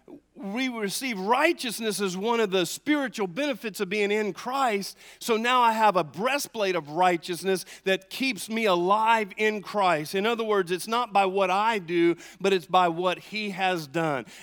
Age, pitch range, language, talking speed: 40-59, 170-215 Hz, English, 180 wpm